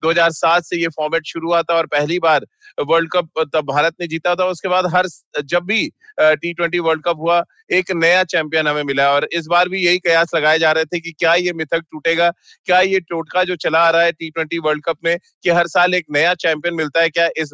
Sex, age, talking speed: male, 30-49, 235 wpm